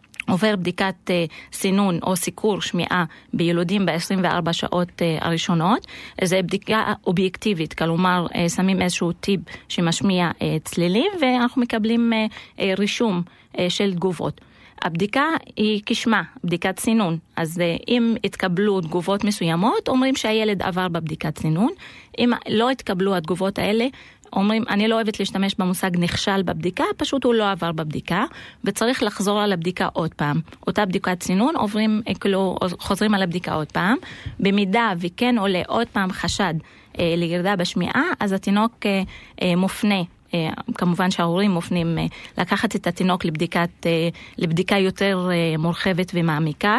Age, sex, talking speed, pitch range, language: 30-49, female, 130 wpm, 175-220 Hz, Hebrew